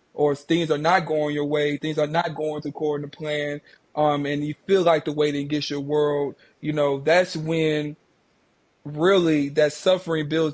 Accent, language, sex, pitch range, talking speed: American, English, male, 145-160 Hz, 195 wpm